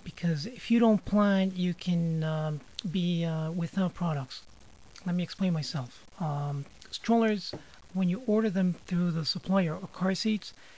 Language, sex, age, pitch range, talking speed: English, male, 40-59, 160-195 Hz, 155 wpm